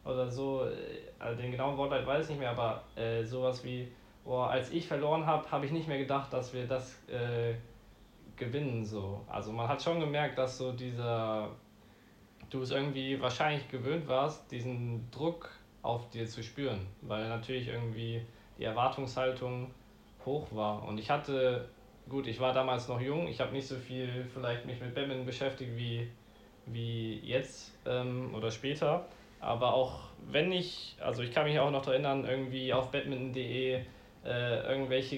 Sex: male